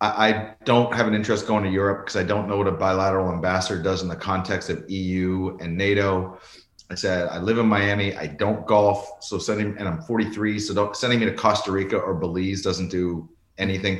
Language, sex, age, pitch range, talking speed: English, male, 30-49, 90-110 Hz, 210 wpm